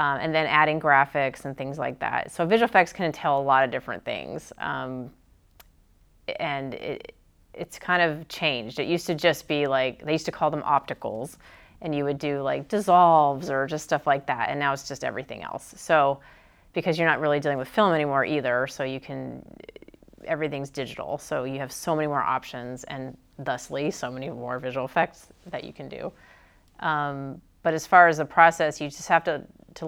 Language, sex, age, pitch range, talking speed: Arabic, female, 30-49, 135-160 Hz, 200 wpm